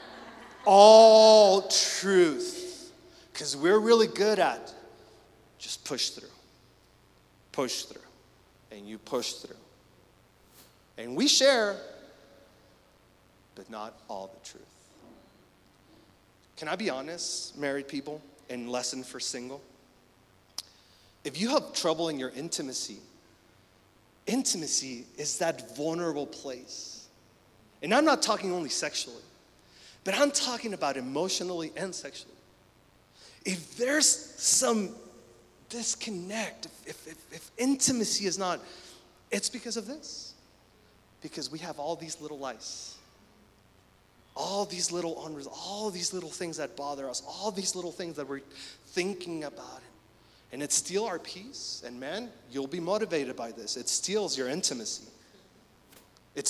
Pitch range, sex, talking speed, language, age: 130-215 Hz, male, 125 wpm, English, 30-49